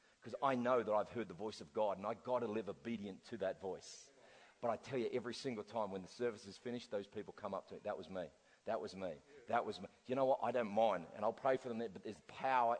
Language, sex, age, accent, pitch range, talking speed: English, male, 40-59, Australian, 115-140 Hz, 280 wpm